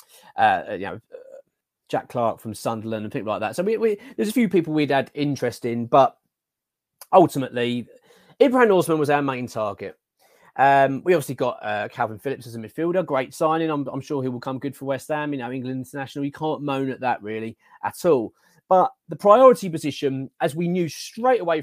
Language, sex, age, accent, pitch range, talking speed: English, male, 30-49, British, 130-165 Hz, 195 wpm